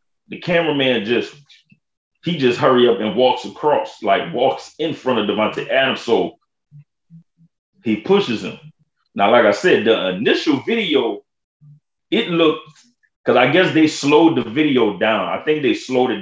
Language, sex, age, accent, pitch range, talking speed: English, male, 30-49, American, 105-155 Hz, 160 wpm